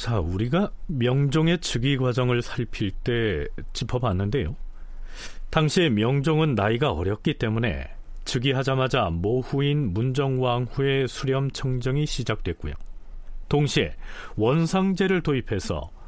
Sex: male